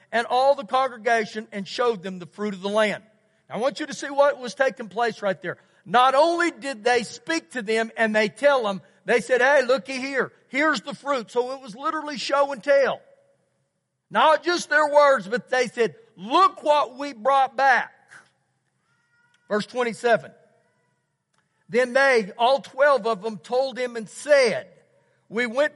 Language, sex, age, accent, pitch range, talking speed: English, male, 50-69, American, 210-275 Hz, 175 wpm